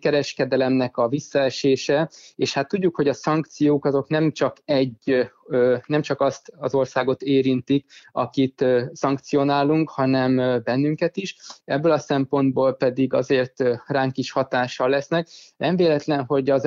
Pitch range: 130-145 Hz